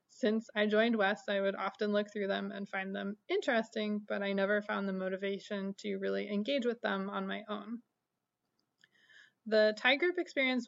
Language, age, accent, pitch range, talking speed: English, 20-39, American, 205-225 Hz, 180 wpm